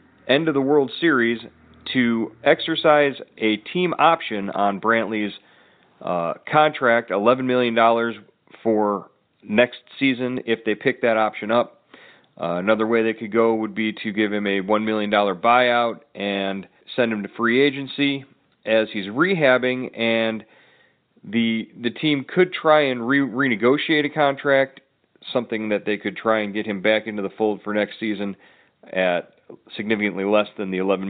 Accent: American